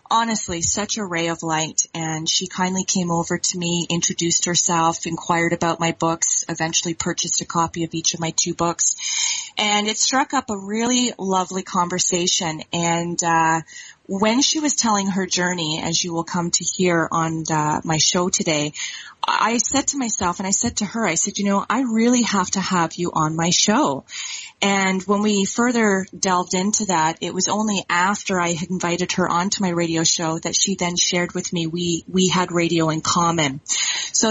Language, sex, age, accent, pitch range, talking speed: English, female, 30-49, American, 170-205 Hz, 190 wpm